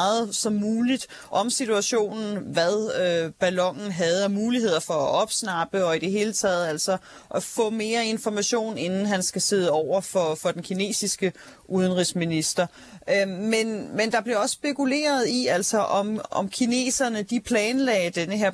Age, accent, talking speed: 30-49, native, 160 wpm